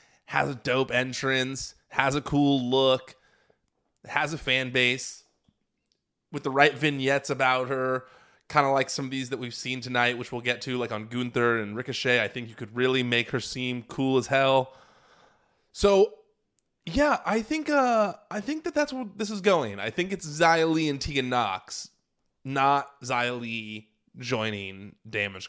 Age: 20-39